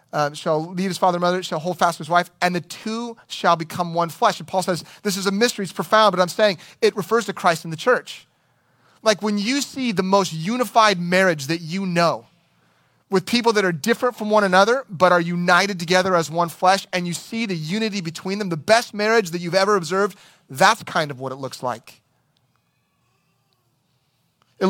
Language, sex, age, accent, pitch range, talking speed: English, male, 30-49, American, 165-210 Hz, 205 wpm